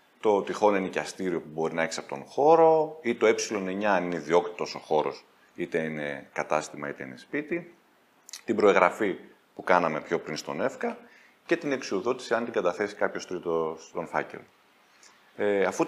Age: 30-49